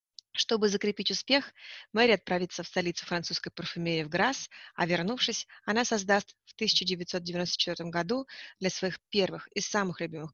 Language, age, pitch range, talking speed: Russian, 20-39, 170-210 Hz, 140 wpm